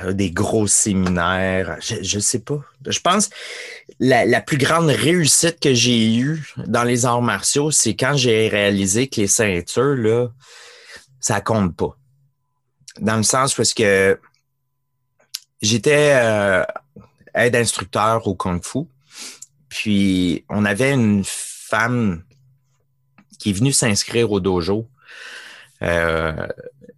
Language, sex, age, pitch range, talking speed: French, male, 30-49, 105-135 Hz, 125 wpm